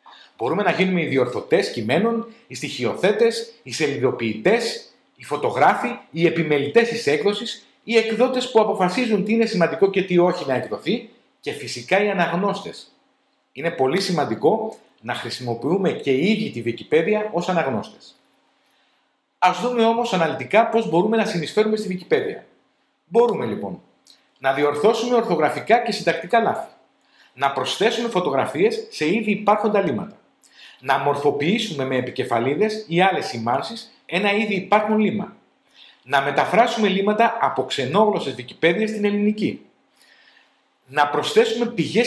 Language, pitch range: Greek, 150-225 Hz